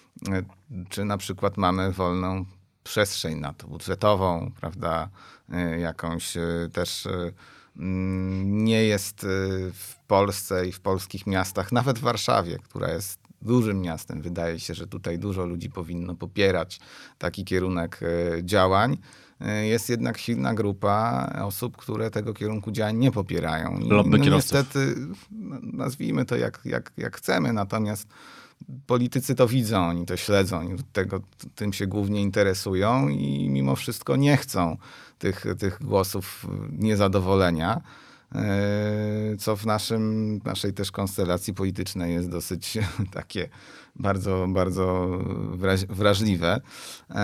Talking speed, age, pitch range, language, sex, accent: 115 wpm, 30-49, 90-105 Hz, Polish, male, native